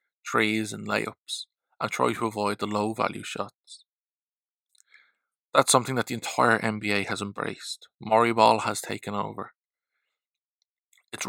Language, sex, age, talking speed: English, male, 20-39, 130 wpm